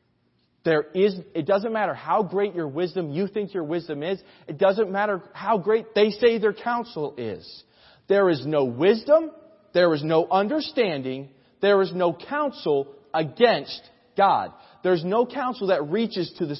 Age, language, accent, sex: 30-49, English, American, male